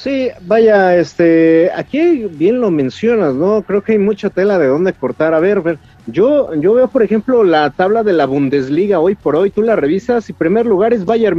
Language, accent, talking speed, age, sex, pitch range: Spanish, Mexican, 210 wpm, 50-69, male, 150-220 Hz